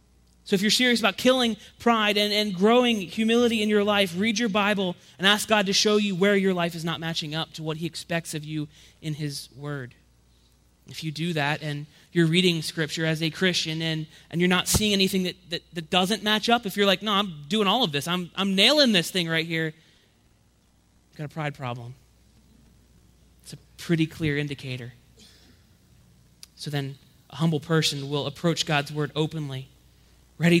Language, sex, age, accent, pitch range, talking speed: English, male, 30-49, American, 145-200 Hz, 195 wpm